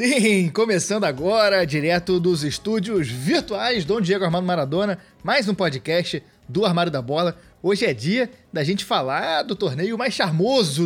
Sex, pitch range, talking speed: male, 155-200 Hz, 155 wpm